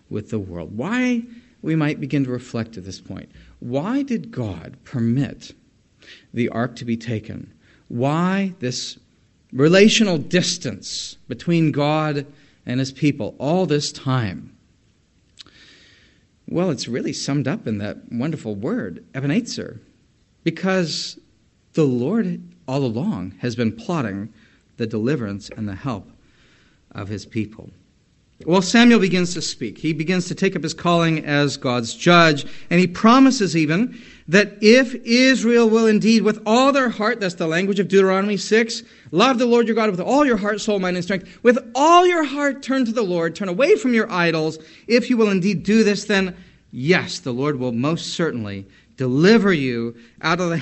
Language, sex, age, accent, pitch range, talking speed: English, male, 40-59, American, 120-200 Hz, 160 wpm